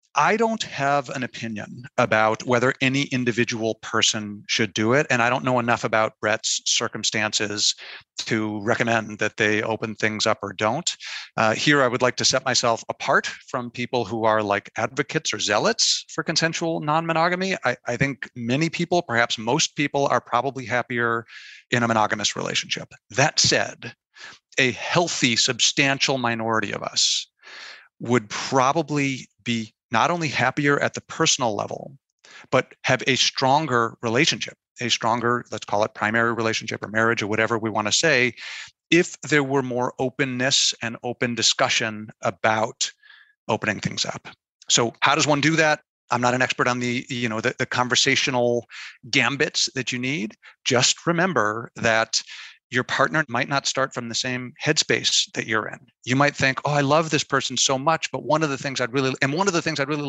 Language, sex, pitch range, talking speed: English, male, 115-145 Hz, 175 wpm